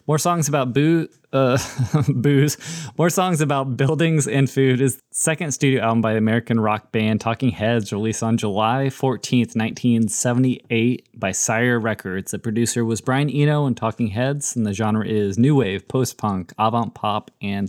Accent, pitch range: American, 110-135 Hz